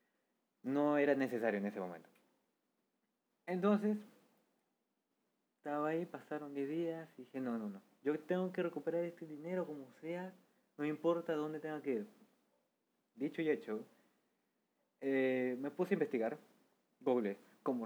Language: Spanish